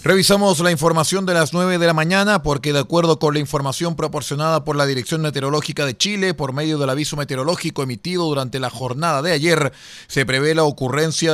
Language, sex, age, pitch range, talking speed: Spanish, male, 30-49, 130-160 Hz, 195 wpm